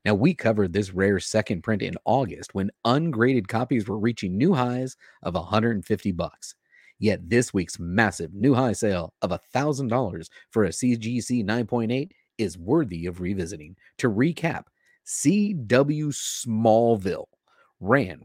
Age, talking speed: 30-49, 140 wpm